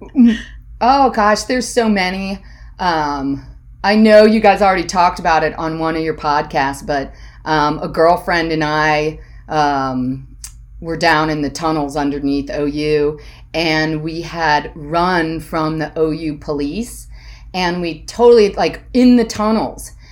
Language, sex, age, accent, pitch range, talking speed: English, female, 30-49, American, 160-235 Hz, 145 wpm